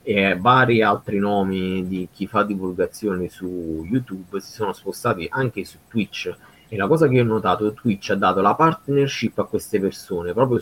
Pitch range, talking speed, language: 90-110 Hz, 185 wpm, Italian